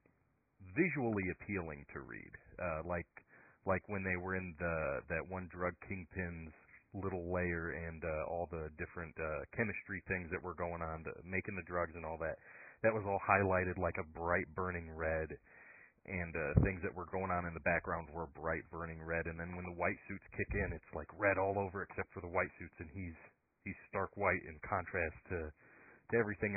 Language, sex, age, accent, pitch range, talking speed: English, male, 30-49, American, 85-105 Hz, 195 wpm